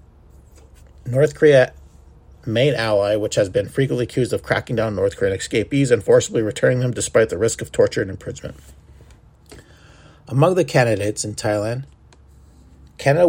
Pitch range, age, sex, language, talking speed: 100-135 Hz, 40-59, male, English, 145 wpm